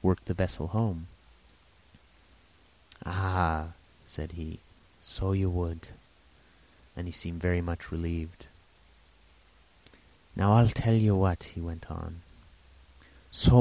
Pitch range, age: 85-100 Hz, 30-49